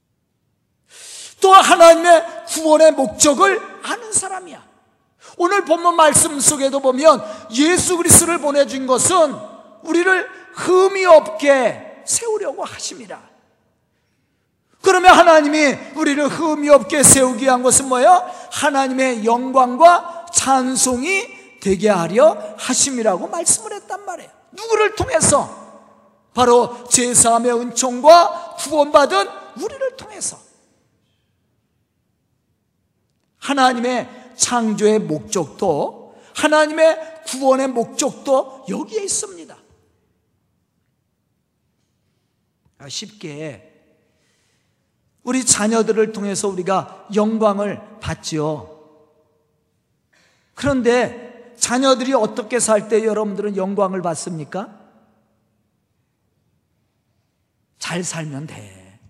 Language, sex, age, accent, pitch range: Korean, male, 40-59, native, 215-330 Hz